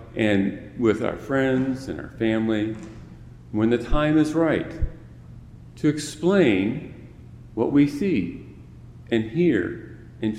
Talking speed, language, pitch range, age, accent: 115 wpm, English, 100-125 Hz, 40-59, American